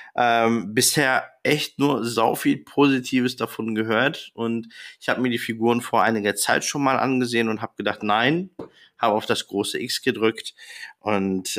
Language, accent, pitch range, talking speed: German, German, 110-140 Hz, 165 wpm